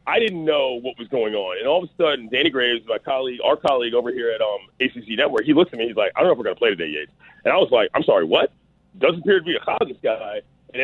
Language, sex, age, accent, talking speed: English, male, 30-49, American, 305 wpm